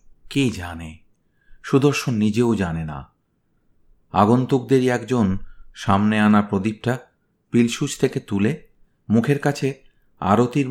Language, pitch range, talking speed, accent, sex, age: Bengali, 95-120 Hz, 95 wpm, native, male, 50-69